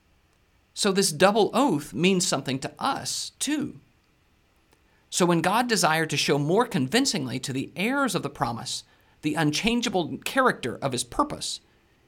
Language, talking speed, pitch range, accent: English, 145 wpm, 135-210 Hz, American